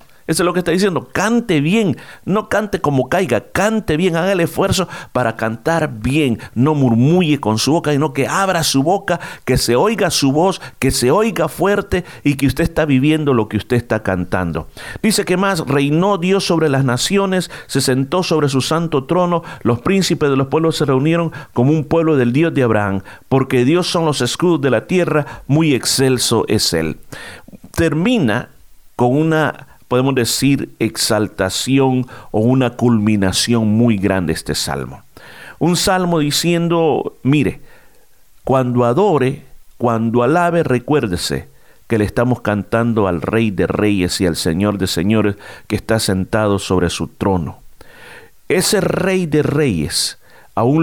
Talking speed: 160 wpm